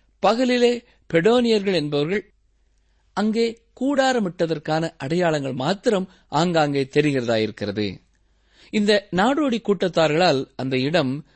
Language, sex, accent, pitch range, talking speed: Tamil, male, native, 125-200 Hz, 75 wpm